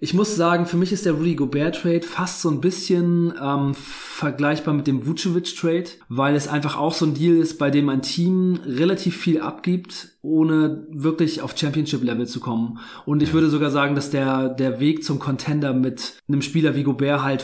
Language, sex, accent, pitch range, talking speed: German, male, German, 140-165 Hz, 195 wpm